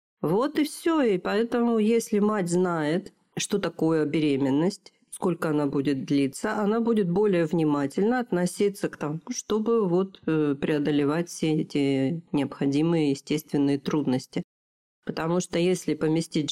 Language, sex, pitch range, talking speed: Russian, female, 145-185 Hz, 125 wpm